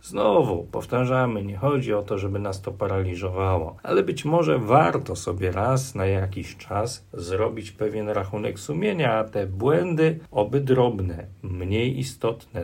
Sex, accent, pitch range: male, native, 95-125 Hz